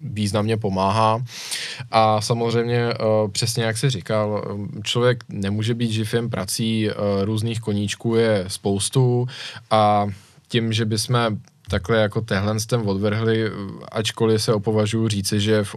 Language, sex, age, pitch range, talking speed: Czech, male, 10-29, 105-115 Hz, 120 wpm